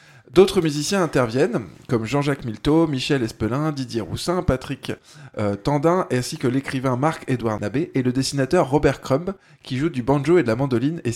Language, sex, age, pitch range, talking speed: French, male, 20-39, 120-155 Hz, 170 wpm